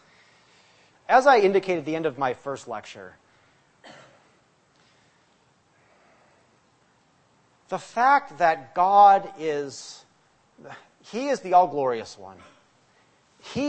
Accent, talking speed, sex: American, 95 wpm, male